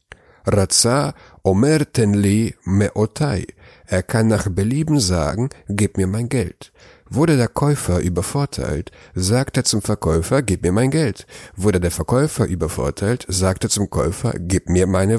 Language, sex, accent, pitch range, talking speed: German, male, German, 90-115 Hz, 140 wpm